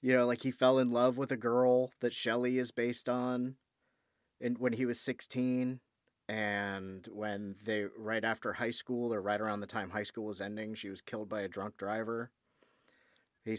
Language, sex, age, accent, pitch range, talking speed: English, male, 30-49, American, 105-125 Hz, 190 wpm